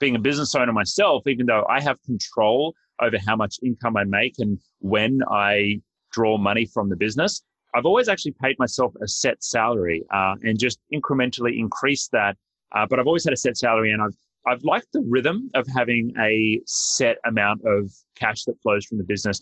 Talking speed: 200 wpm